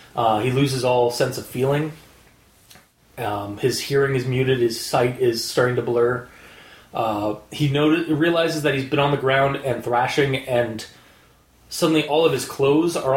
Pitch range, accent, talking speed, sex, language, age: 125-155 Hz, American, 170 wpm, male, English, 30-49